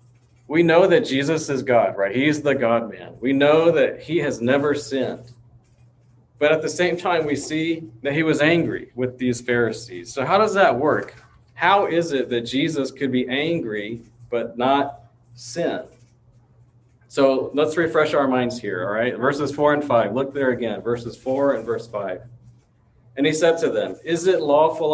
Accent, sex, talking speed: American, male, 180 wpm